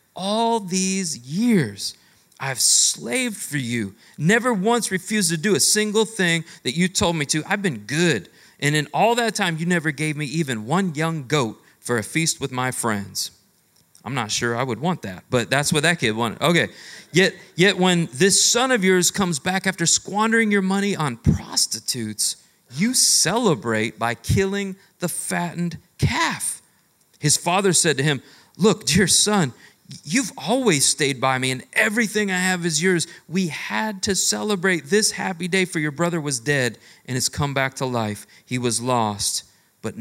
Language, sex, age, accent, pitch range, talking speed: English, male, 40-59, American, 120-190 Hz, 180 wpm